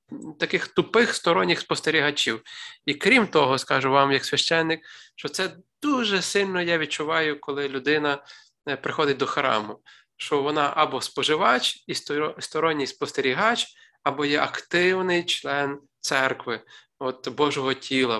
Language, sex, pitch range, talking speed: Ukrainian, male, 135-165 Hz, 120 wpm